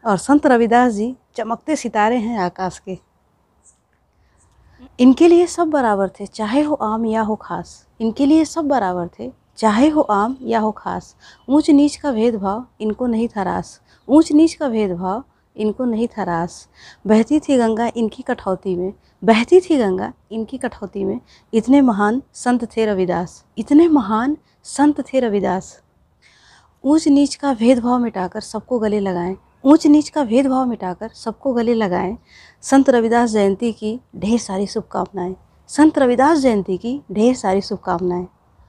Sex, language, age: female, Hindi, 30-49